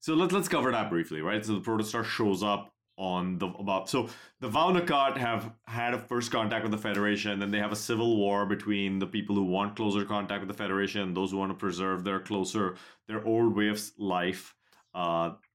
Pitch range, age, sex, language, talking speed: 95-115 Hz, 30-49, male, English, 220 wpm